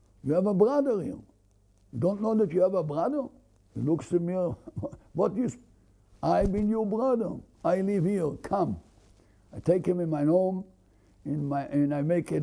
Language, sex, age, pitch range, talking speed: English, male, 60-79, 125-180 Hz, 180 wpm